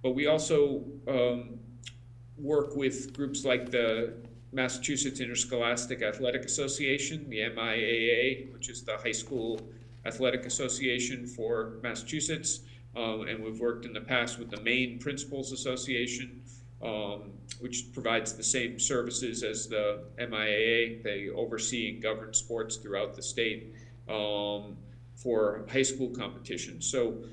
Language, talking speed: English, 130 wpm